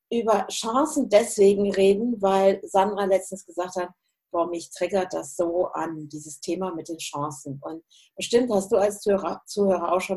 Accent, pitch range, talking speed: German, 185-235 Hz, 165 wpm